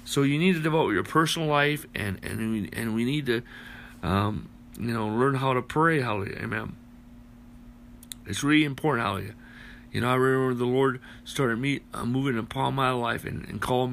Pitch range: 115-135 Hz